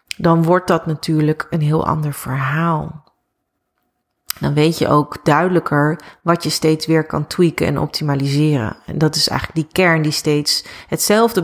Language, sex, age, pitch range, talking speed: Dutch, female, 30-49, 150-180 Hz, 155 wpm